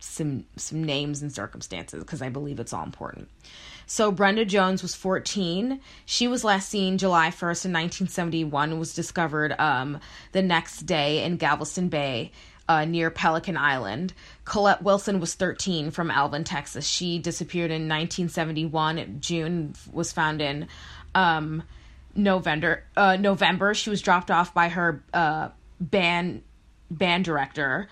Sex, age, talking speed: female, 20-39, 140 wpm